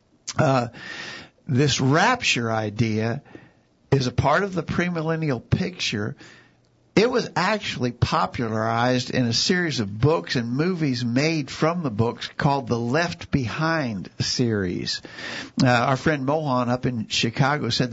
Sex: male